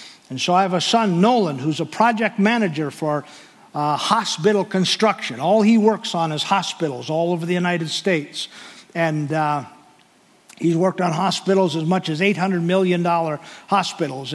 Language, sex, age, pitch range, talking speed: English, male, 50-69, 160-220 Hz, 160 wpm